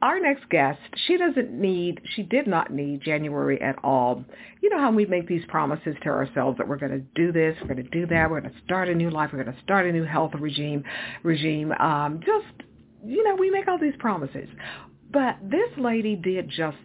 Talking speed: 225 wpm